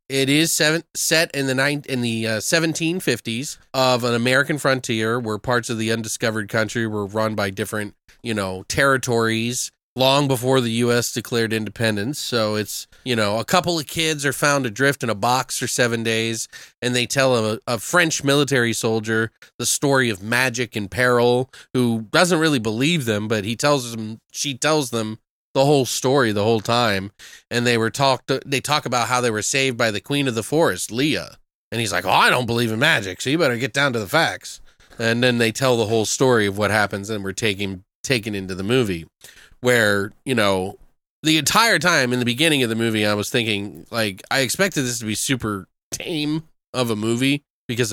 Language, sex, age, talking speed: English, male, 20-39, 200 wpm